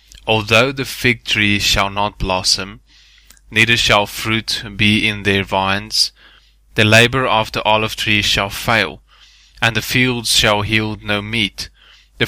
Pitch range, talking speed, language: 100-120 Hz, 145 wpm, English